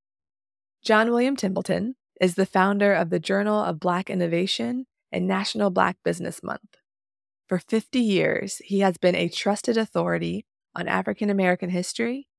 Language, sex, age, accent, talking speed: English, female, 20-39, American, 145 wpm